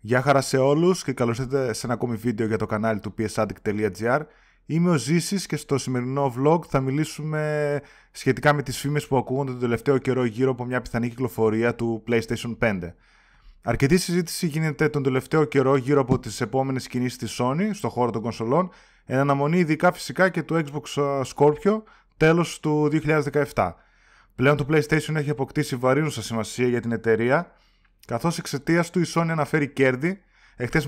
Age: 20-39